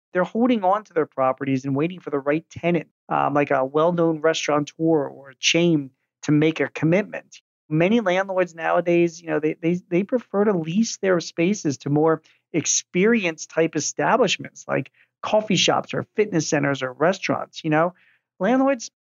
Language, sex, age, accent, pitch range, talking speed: English, male, 40-59, American, 155-200 Hz, 165 wpm